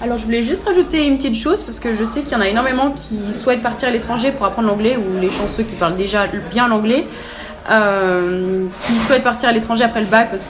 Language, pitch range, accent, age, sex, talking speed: French, 200-250 Hz, French, 20-39, female, 240 wpm